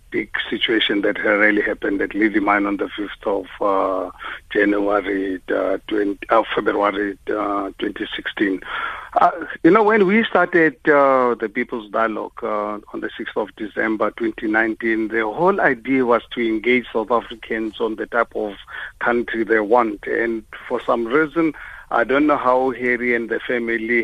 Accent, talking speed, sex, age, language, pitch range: South African, 160 wpm, male, 50-69, English, 115-140 Hz